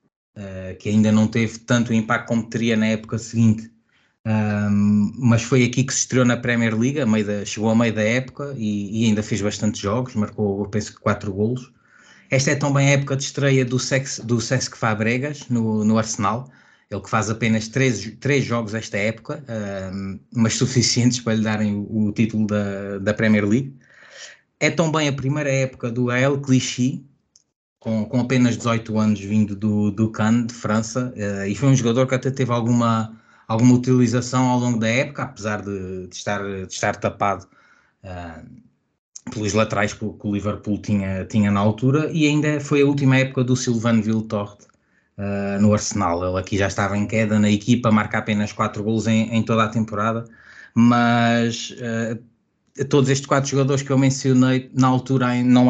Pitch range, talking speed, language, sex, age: 105-125 Hz, 175 wpm, Portuguese, male, 20-39